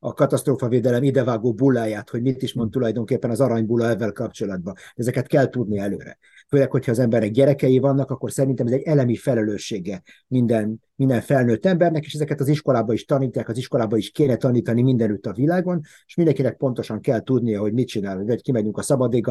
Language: Hungarian